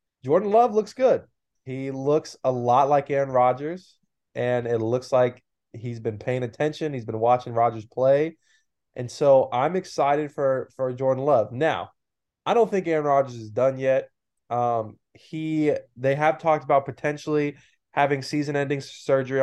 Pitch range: 120-145 Hz